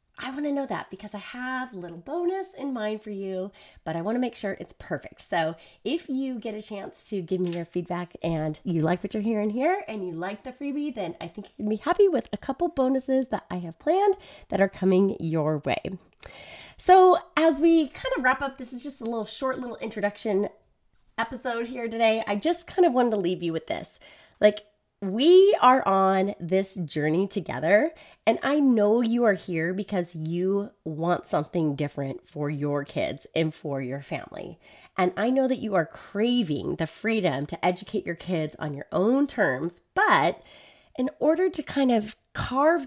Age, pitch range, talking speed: 30-49, 180-265 Hz, 200 wpm